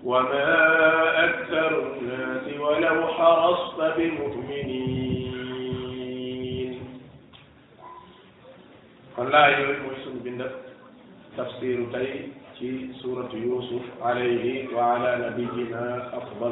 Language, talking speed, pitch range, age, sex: French, 60 wpm, 125-155 Hz, 50-69, male